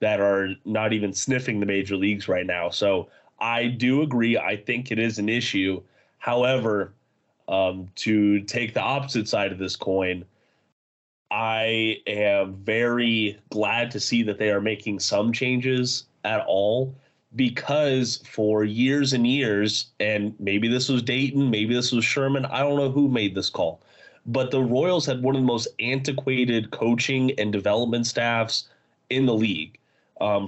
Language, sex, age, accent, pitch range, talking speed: English, male, 20-39, American, 105-125 Hz, 160 wpm